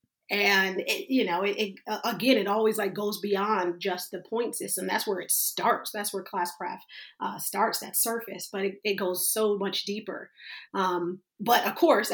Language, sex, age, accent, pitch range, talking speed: English, female, 30-49, American, 195-225 Hz, 200 wpm